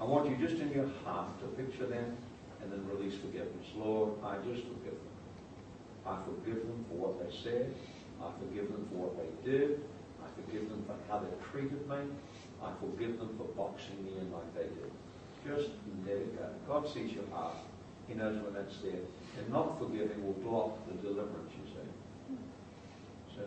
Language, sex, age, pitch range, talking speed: English, male, 60-79, 105-145 Hz, 190 wpm